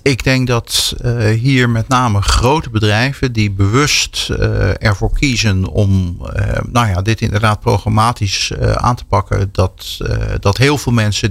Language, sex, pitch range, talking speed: Dutch, male, 105-130 Hz, 165 wpm